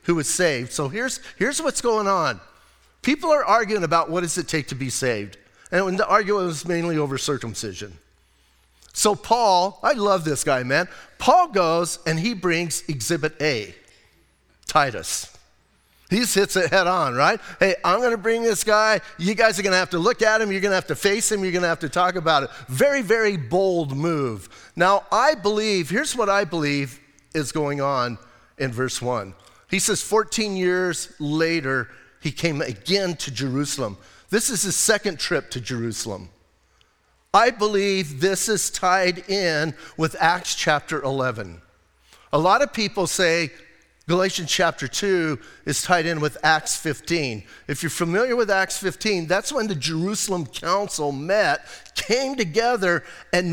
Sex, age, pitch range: male, 40-59, 140-200 Hz